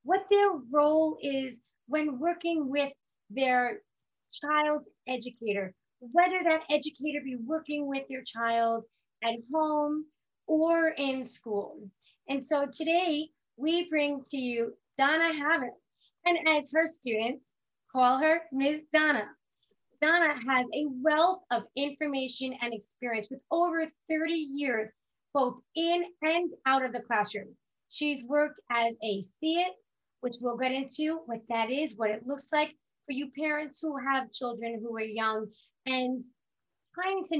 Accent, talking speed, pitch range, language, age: American, 140 wpm, 245-320 Hz, English, 30-49